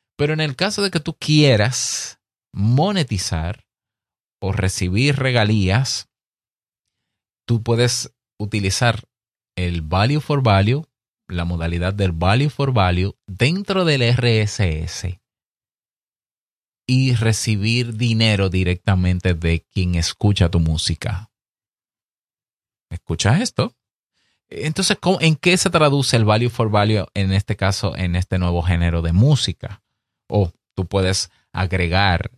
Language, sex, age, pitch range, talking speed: Spanish, male, 30-49, 90-120 Hz, 115 wpm